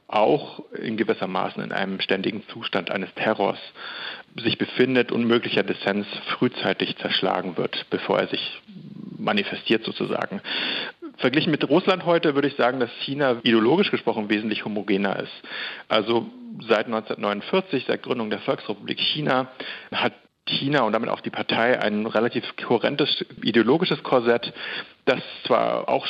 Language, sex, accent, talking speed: German, male, German, 135 wpm